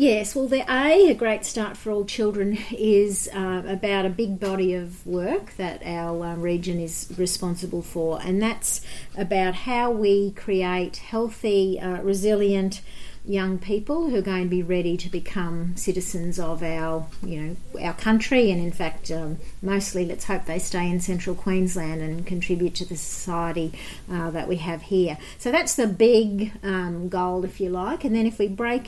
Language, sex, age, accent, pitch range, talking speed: English, female, 40-59, Australian, 180-215 Hz, 180 wpm